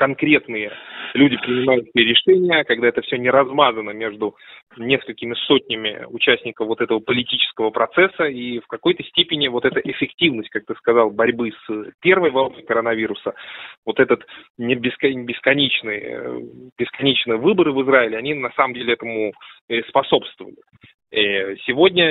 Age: 20-39